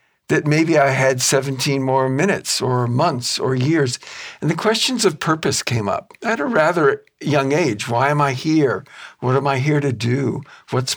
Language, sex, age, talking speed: English, male, 60-79, 185 wpm